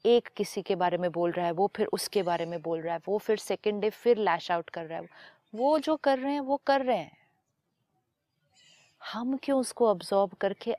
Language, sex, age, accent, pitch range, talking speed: Hindi, female, 30-49, native, 170-210 Hz, 220 wpm